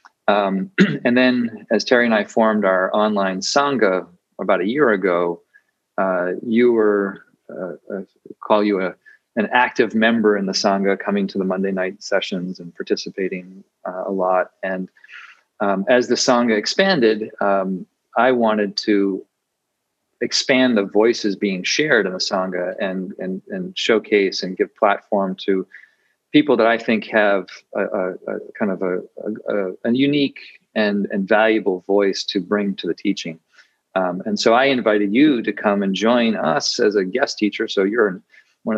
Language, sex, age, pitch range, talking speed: English, male, 40-59, 95-120 Hz, 165 wpm